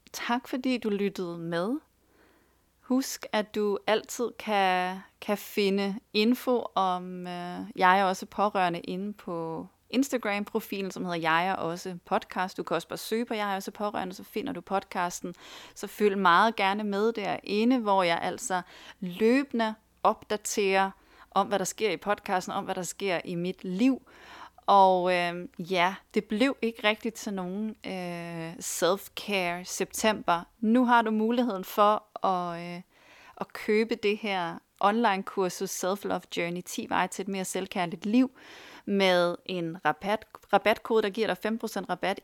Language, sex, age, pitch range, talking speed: Danish, female, 30-49, 185-220 Hz, 150 wpm